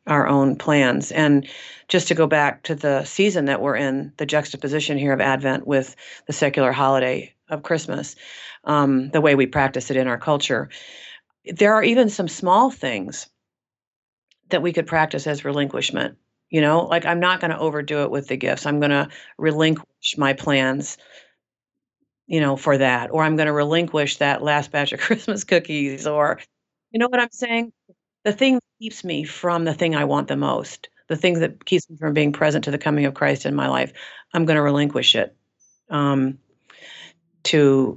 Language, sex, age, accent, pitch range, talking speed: English, female, 50-69, American, 140-175 Hz, 190 wpm